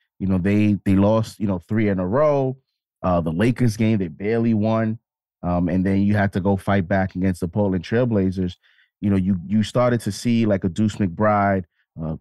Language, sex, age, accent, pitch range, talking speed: English, male, 30-49, American, 95-120 Hz, 210 wpm